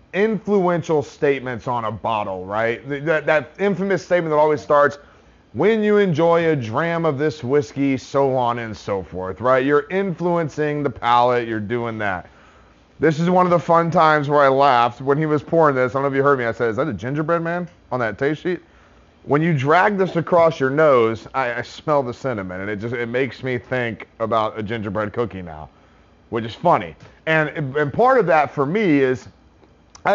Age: 30-49